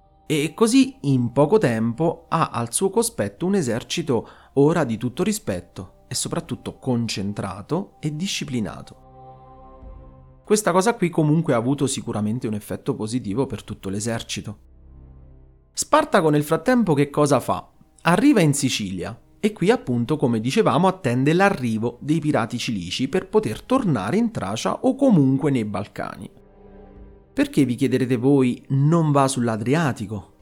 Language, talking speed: Italian, 135 wpm